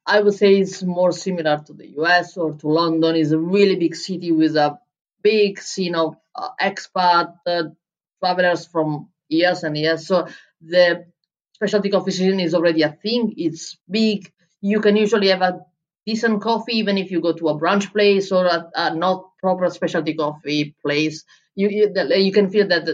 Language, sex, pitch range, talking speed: English, female, 165-195 Hz, 185 wpm